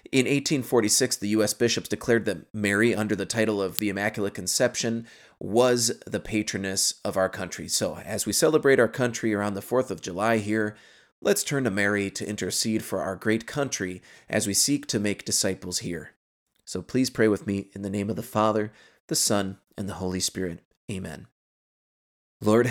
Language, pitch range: English, 95-110 Hz